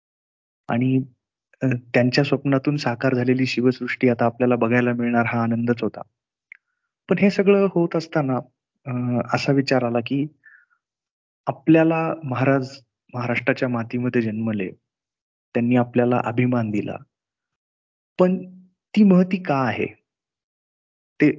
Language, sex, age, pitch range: Marathi, male, 30-49, 120-150 Hz